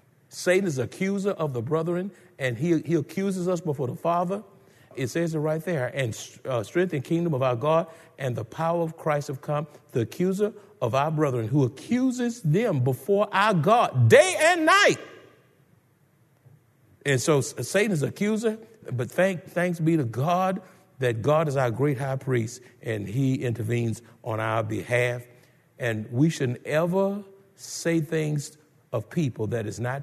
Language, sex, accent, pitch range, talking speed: English, male, American, 125-170 Hz, 165 wpm